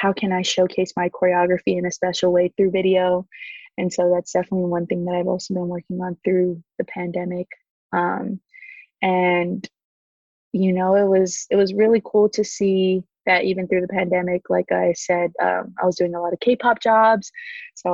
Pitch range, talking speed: 180-195 Hz, 190 wpm